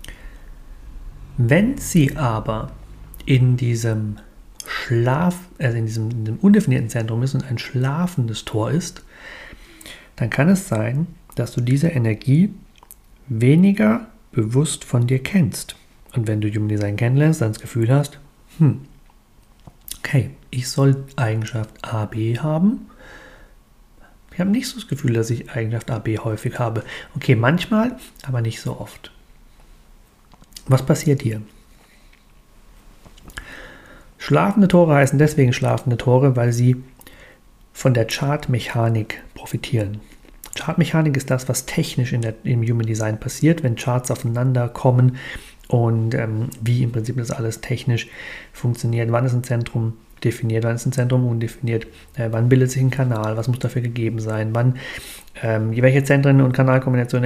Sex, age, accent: male, 40-59, German